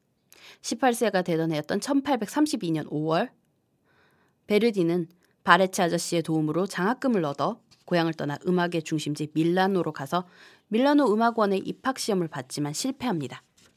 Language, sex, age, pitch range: Korean, female, 20-39, 160-230 Hz